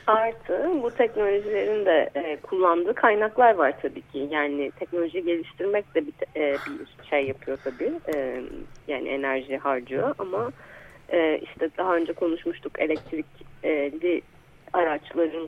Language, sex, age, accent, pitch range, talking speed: Turkish, female, 30-49, native, 140-180 Hz, 105 wpm